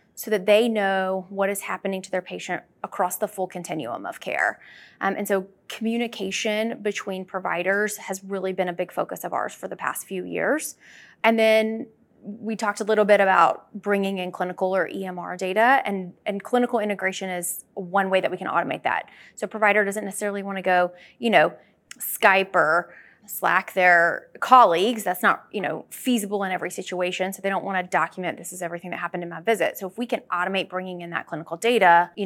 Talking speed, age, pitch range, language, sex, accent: 205 wpm, 20-39, 180-210 Hz, English, female, American